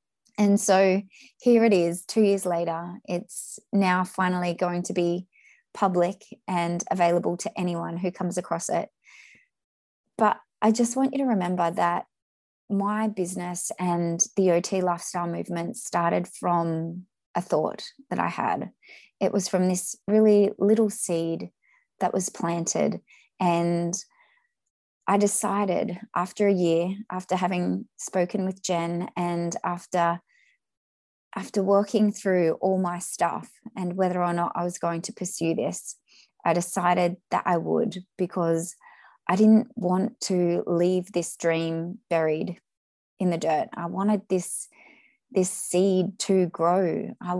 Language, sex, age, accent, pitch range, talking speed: English, female, 20-39, Australian, 175-205 Hz, 140 wpm